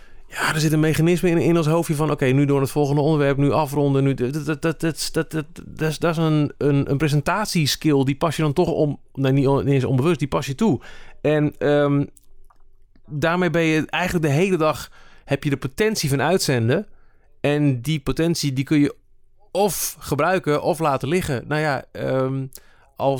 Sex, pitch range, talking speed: male, 130-155 Hz, 195 wpm